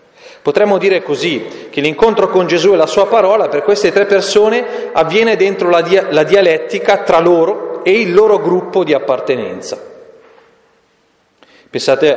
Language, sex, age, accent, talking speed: Italian, male, 40-59, native, 145 wpm